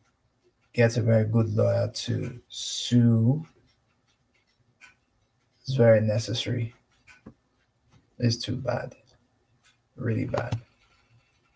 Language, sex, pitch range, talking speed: English, male, 115-125 Hz, 80 wpm